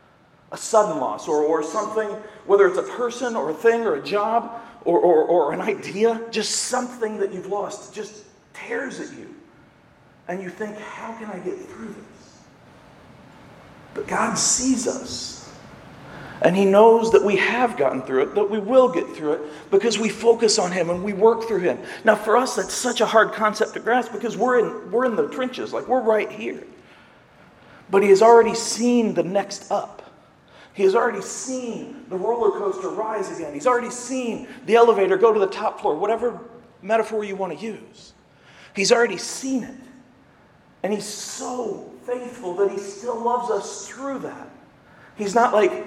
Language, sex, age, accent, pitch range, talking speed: English, male, 40-59, American, 200-240 Hz, 185 wpm